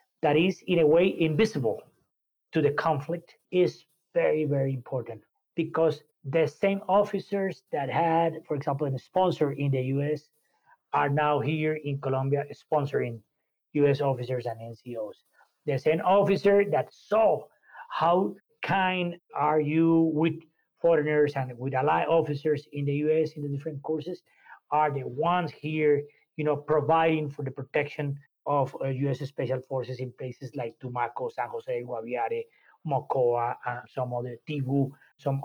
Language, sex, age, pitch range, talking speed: English, male, 30-49, 140-170 Hz, 140 wpm